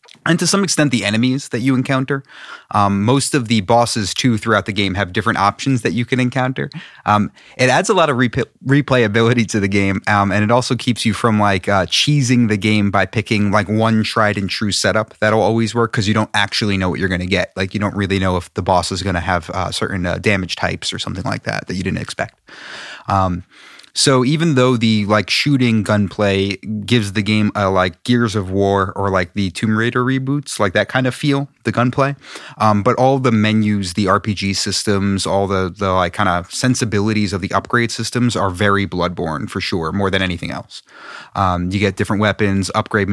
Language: English